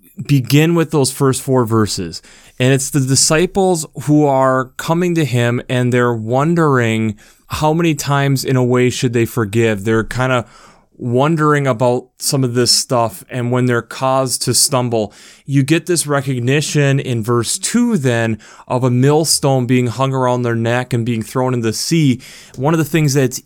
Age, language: 20-39, English